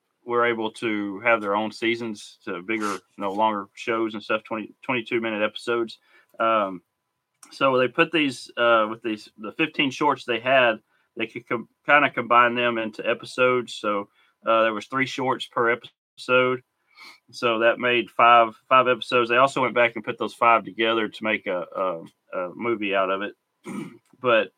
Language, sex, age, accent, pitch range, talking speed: English, male, 30-49, American, 105-120 Hz, 185 wpm